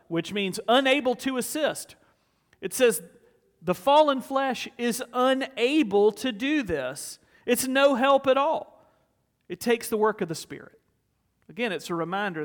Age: 40-59